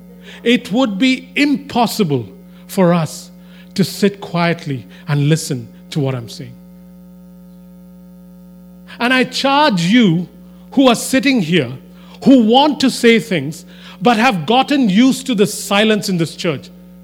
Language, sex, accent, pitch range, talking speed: English, male, Indian, 180-230 Hz, 135 wpm